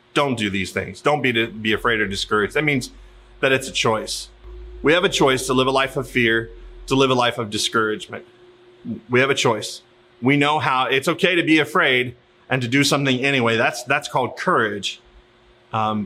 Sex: male